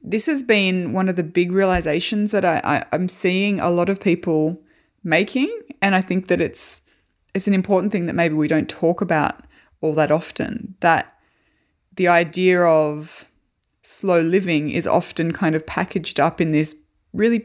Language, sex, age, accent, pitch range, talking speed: English, female, 20-39, Australian, 155-190 Hz, 175 wpm